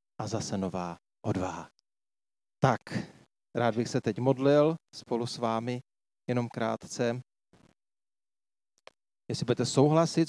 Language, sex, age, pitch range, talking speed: Czech, male, 40-59, 110-135 Hz, 105 wpm